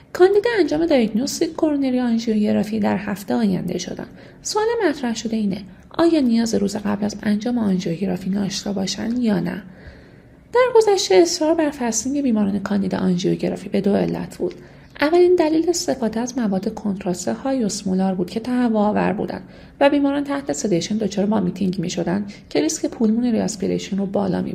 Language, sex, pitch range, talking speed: Persian, female, 190-265 Hz, 155 wpm